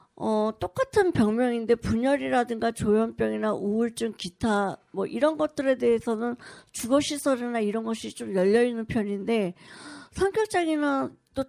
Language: Korean